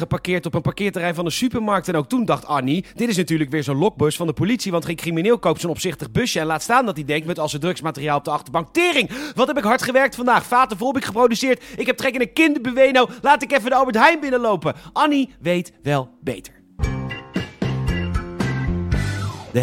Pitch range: 130-185 Hz